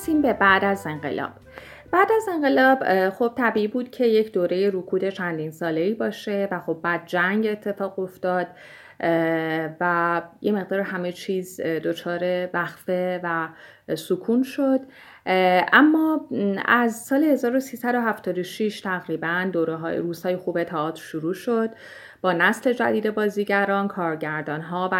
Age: 30-49